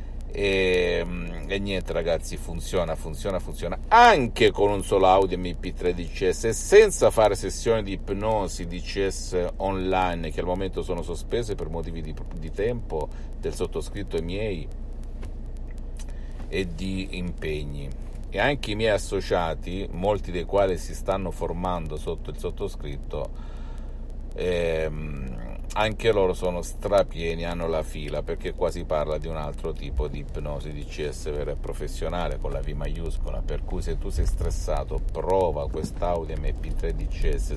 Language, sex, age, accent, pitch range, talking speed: Italian, male, 50-69, native, 75-90 Hz, 145 wpm